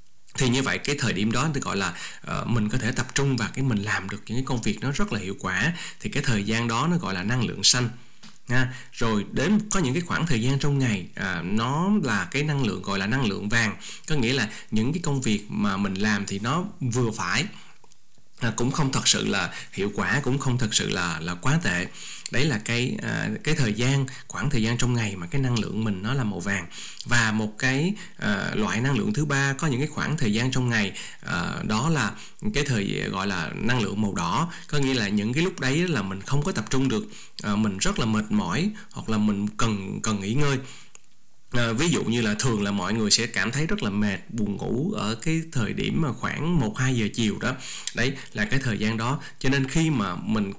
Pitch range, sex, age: 110-140 Hz, male, 20-39